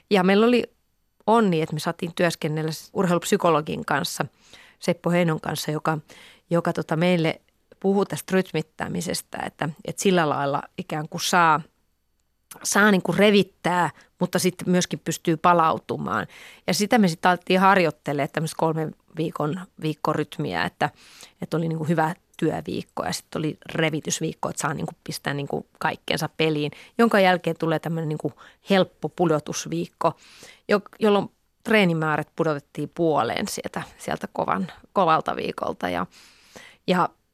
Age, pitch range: 30-49, 160-200 Hz